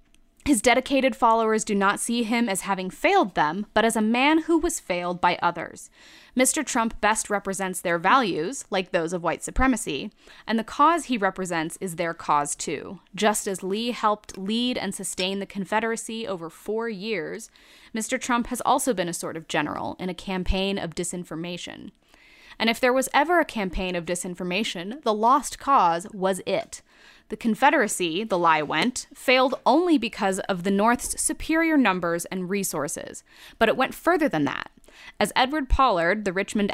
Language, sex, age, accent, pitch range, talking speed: English, female, 10-29, American, 185-255 Hz, 175 wpm